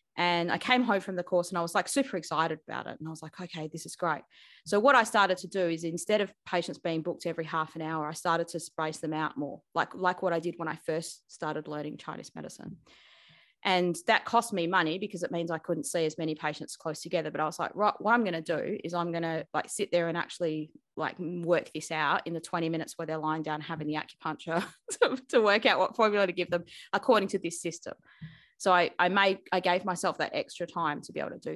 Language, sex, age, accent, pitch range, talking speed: English, female, 20-39, Australian, 160-190 Hz, 260 wpm